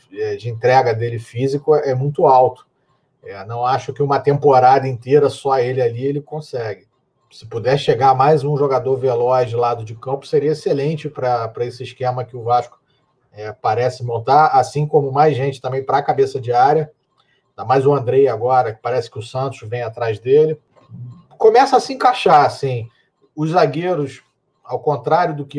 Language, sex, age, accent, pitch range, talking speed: Portuguese, male, 40-59, Brazilian, 125-150 Hz, 180 wpm